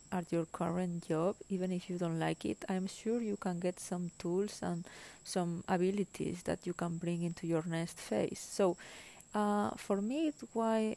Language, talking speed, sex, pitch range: English, 185 wpm, female, 170-205 Hz